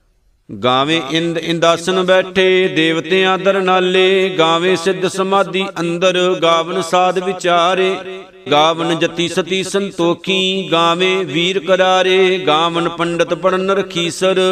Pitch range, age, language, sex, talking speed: 170-190 Hz, 50-69, Punjabi, male, 100 wpm